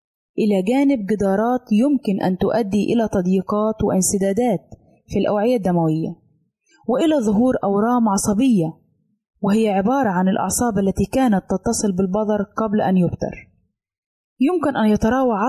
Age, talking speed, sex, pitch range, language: 20-39, 115 wpm, female, 190-230 Hz, Arabic